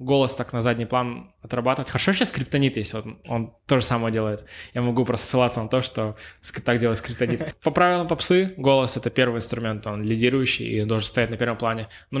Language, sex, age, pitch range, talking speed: Russian, male, 20-39, 115-135 Hz, 215 wpm